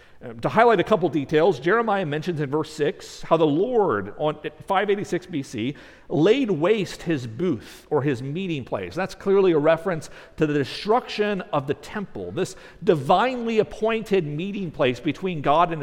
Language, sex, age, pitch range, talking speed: English, male, 50-69, 155-210 Hz, 165 wpm